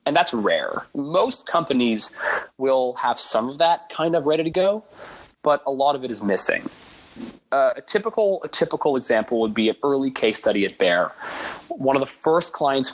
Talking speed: 190 wpm